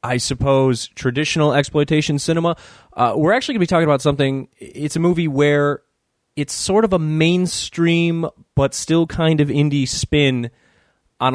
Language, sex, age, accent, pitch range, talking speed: English, male, 20-39, American, 115-155 Hz, 160 wpm